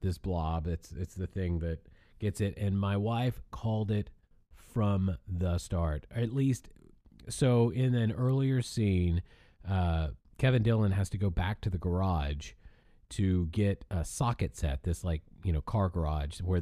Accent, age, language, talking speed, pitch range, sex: American, 30-49, English, 165 wpm, 85-105 Hz, male